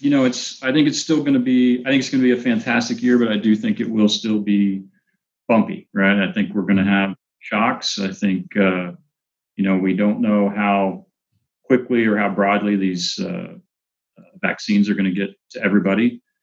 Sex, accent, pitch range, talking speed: male, American, 95-115 Hz, 210 wpm